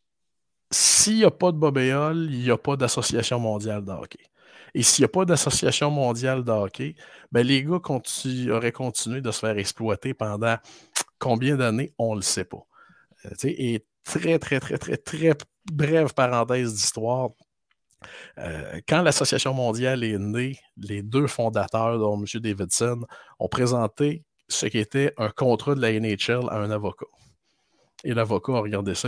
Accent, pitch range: Canadian, 110-155 Hz